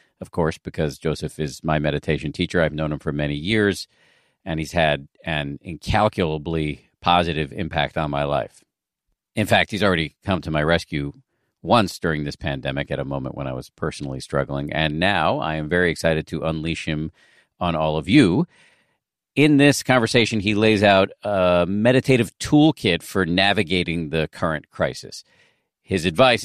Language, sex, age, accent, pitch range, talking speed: English, male, 50-69, American, 80-105 Hz, 165 wpm